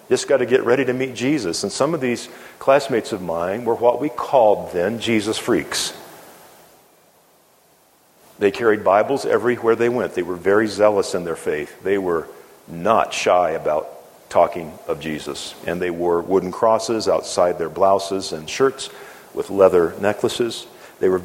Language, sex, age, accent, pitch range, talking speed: English, male, 50-69, American, 110-145 Hz, 165 wpm